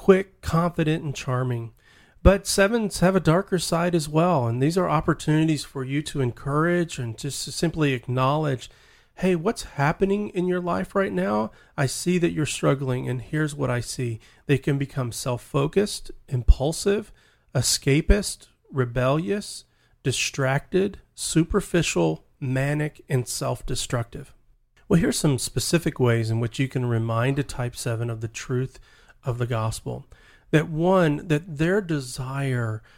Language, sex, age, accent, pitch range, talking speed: English, male, 40-59, American, 125-160 Hz, 145 wpm